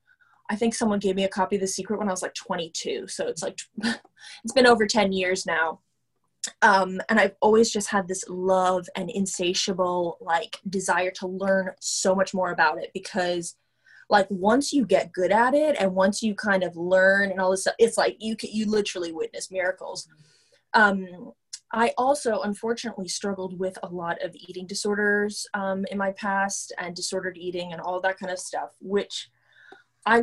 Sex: female